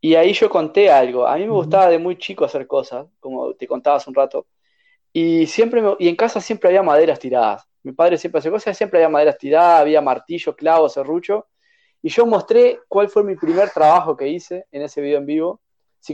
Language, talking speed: Spanish, 220 wpm